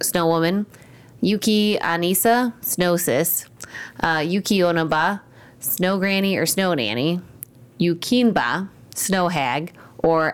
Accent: American